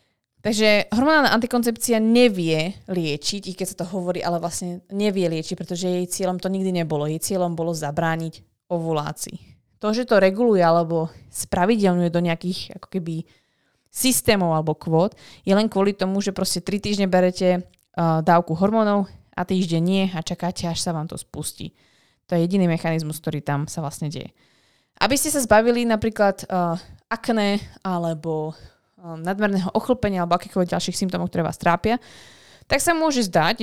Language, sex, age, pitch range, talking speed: Slovak, female, 20-39, 170-205 Hz, 160 wpm